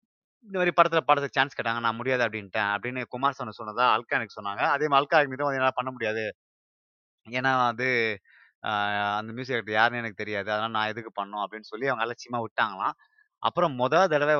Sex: male